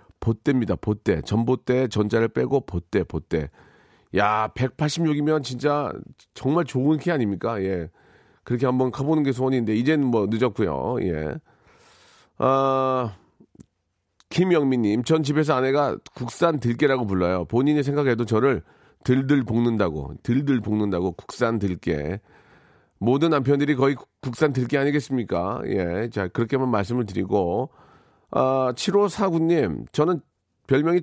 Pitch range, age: 115-155 Hz, 40-59